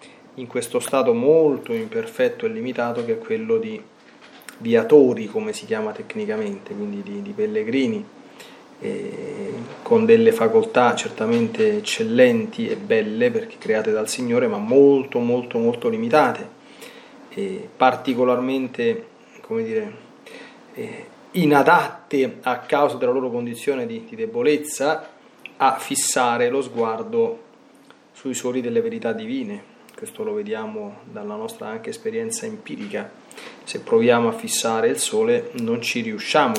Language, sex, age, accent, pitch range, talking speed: Italian, male, 30-49, native, 175-230 Hz, 130 wpm